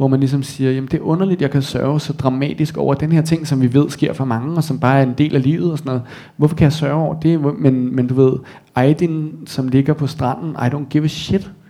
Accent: native